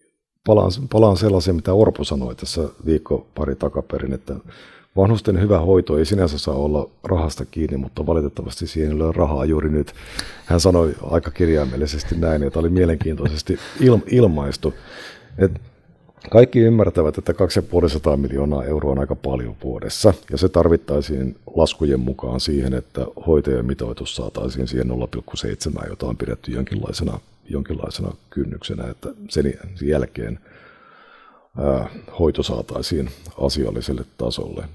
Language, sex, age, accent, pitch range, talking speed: Finnish, male, 50-69, native, 70-95 Hz, 125 wpm